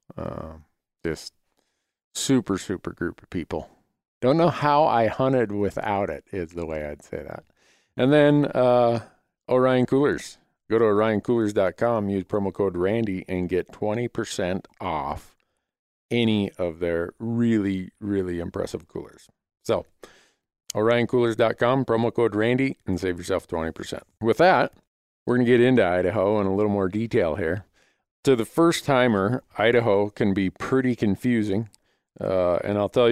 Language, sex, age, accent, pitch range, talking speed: English, male, 50-69, American, 95-120 Hz, 145 wpm